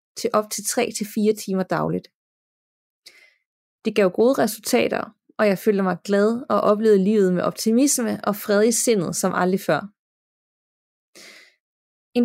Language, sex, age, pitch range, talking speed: Danish, female, 30-49, 190-230 Hz, 135 wpm